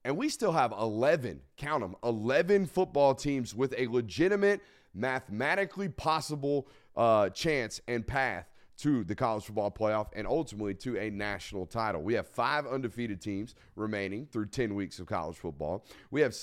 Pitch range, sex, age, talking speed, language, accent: 110-145 Hz, male, 30-49, 160 wpm, English, American